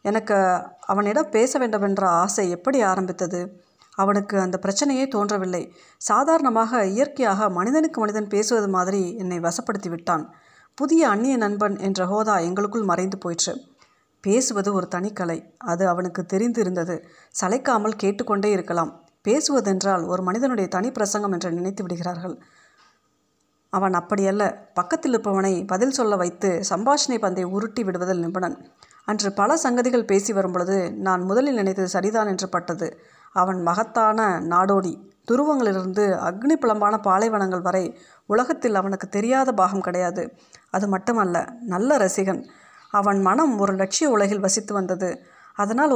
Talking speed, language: 125 wpm, Tamil